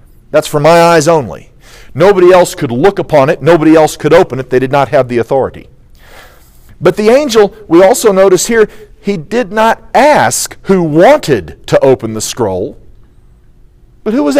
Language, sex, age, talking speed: English, male, 40-59, 175 wpm